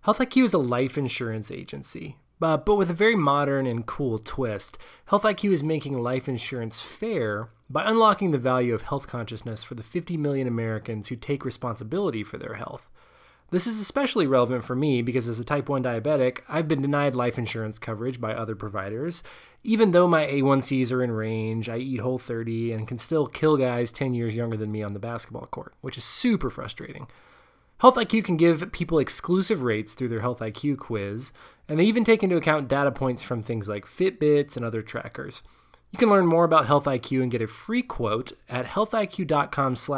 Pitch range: 115-160 Hz